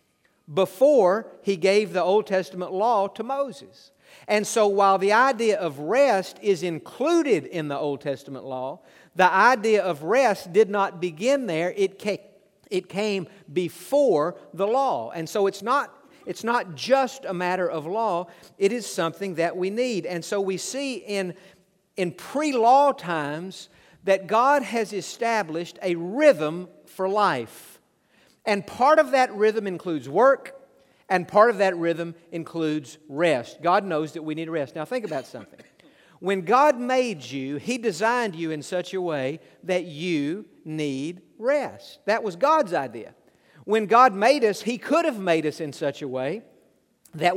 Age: 50-69